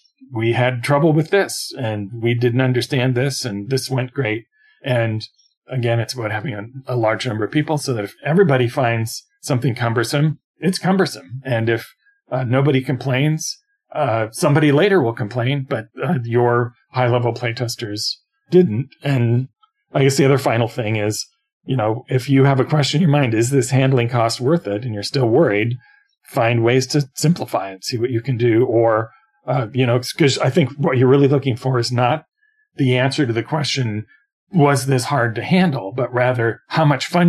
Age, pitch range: 40-59, 115-145 Hz